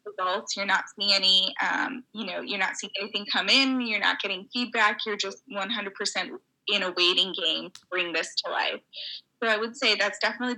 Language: English